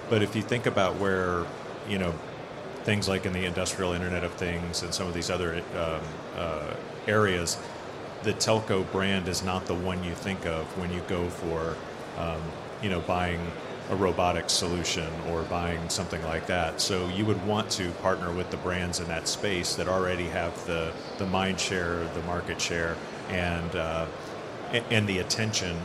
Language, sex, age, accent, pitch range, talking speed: English, male, 40-59, American, 85-105 Hz, 180 wpm